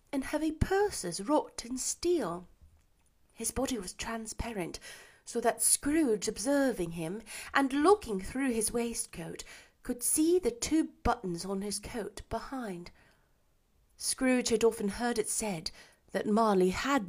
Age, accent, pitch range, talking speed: 30-49, British, 205-285 Hz, 130 wpm